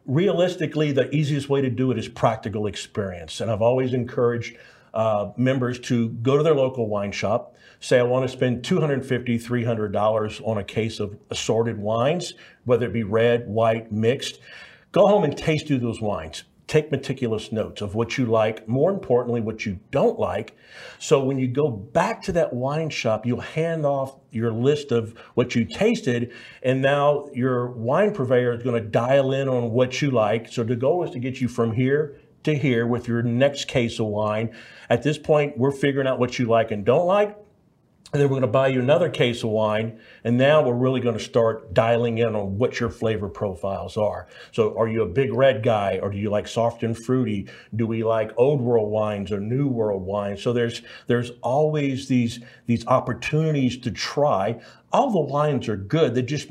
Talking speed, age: 200 wpm, 50-69